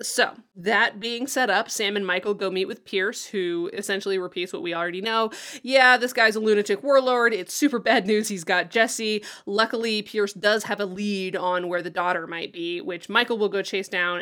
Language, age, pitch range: English, 20-39, 180-215 Hz